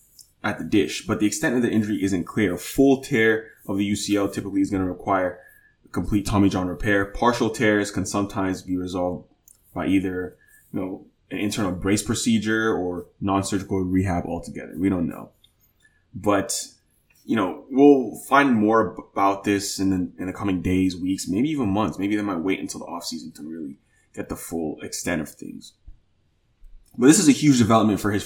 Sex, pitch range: male, 95-115 Hz